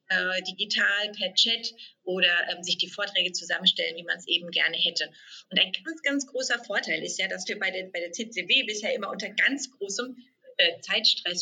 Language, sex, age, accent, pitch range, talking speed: German, female, 30-49, German, 180-230 Hz, 195 wpm